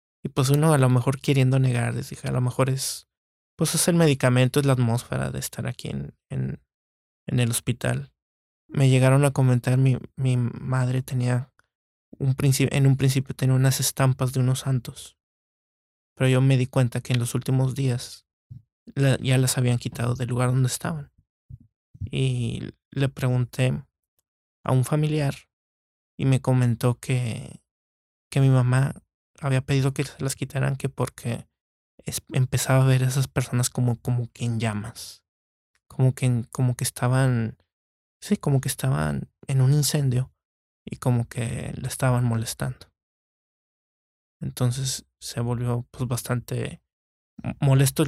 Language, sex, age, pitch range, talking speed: Spanish, male, 20-39, 120-135 Hz, 155 wpm